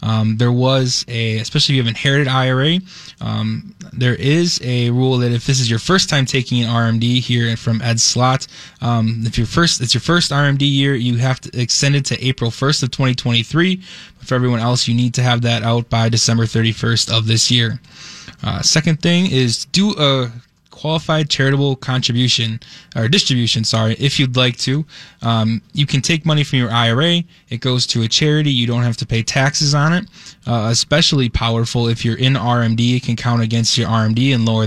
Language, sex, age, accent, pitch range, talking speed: English, male, 20-39, American, 115-140 Hz, 200 wpm